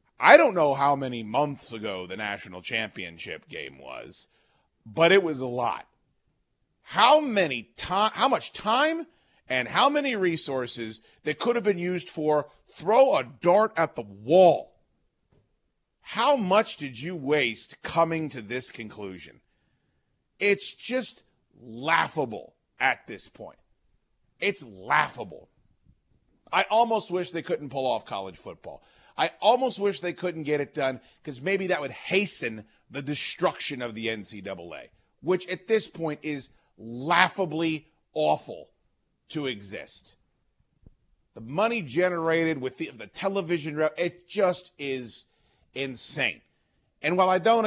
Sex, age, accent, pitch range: male, 40-59, American, 130-180 Hz